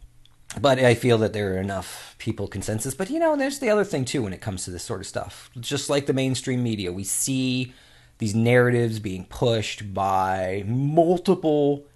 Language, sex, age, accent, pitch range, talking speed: English, male, 40-59, American, 100-140 Hz, 190 wpm